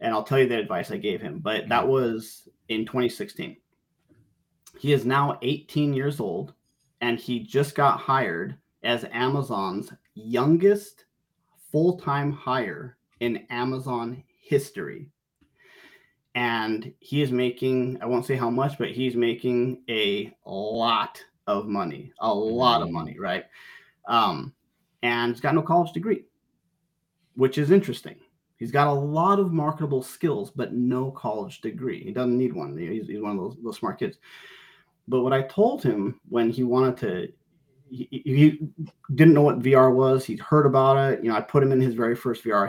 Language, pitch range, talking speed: English, 120-145 Hz, 165 wpm